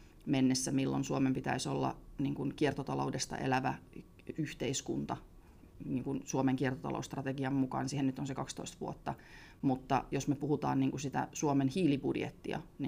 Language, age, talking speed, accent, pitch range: Finnish, 30-49, 110 wpm, native, 130-150 Hz